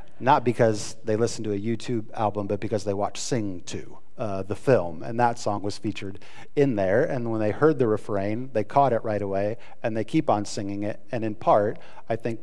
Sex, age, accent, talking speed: male, 40-59, American, 220 wpm